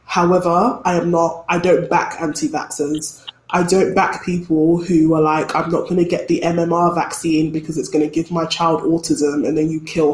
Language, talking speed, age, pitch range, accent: English, 205 wpm, 20-39, 165-195 Hz, British